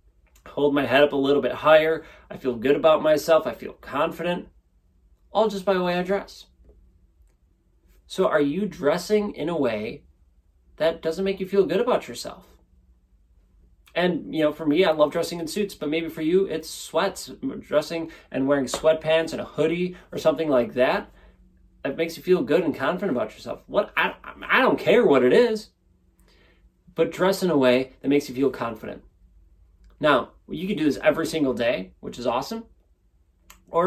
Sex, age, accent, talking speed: male, 30-49, American, 185 wpm